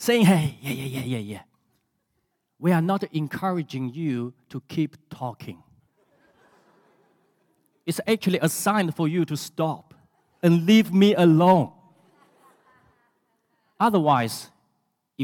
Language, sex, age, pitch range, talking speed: English, male, 50-69, 145-205 Hz, 110 wpm